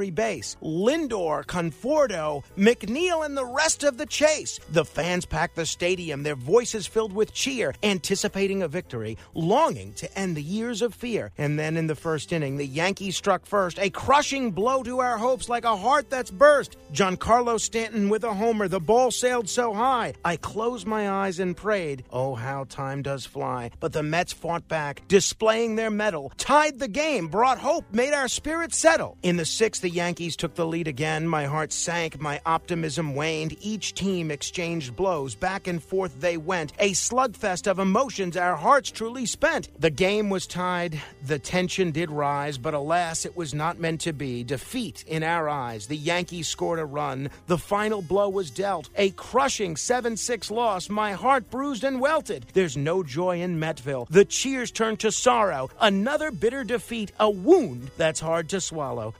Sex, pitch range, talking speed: male, 160-225 Hz, 180 wpm